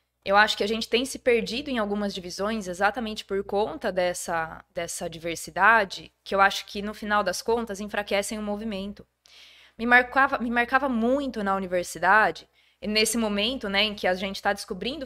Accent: Brazilian